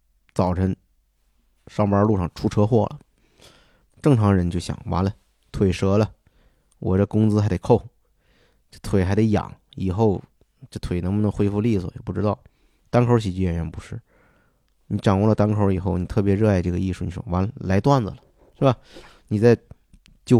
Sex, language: male, Chinese